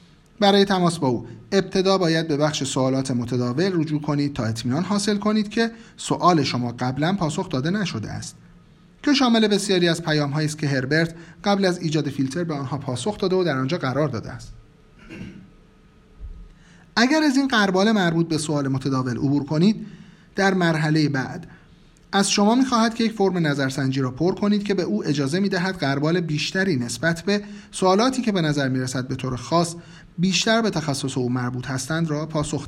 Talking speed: 175 wpm